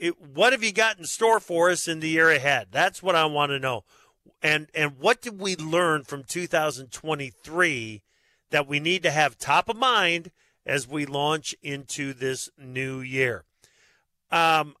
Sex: male